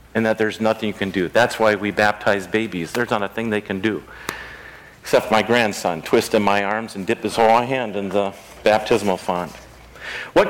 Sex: male